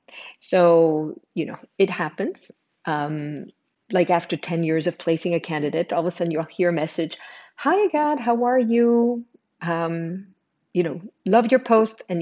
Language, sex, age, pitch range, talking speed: English, female, 50-69, 150-195 Hz, 165 wpm